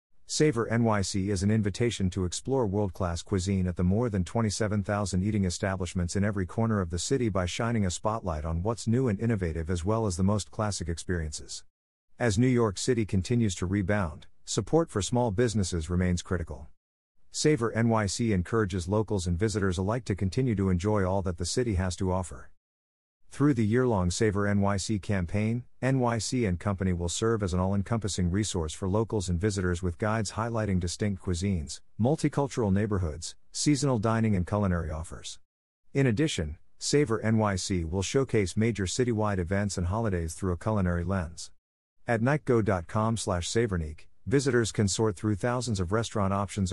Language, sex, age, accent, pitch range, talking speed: English, male, 50-69, American, 90-115 Hz, 160 wpm